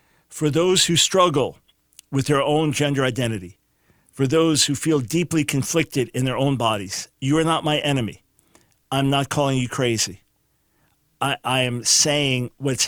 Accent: American